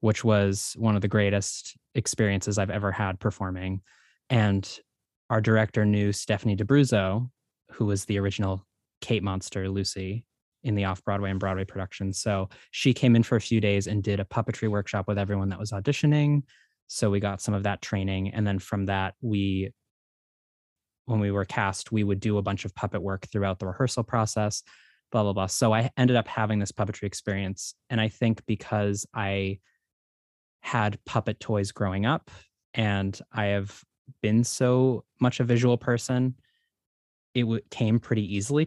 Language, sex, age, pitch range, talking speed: English, male, 20-39, 100-115 Hz, 170 wpm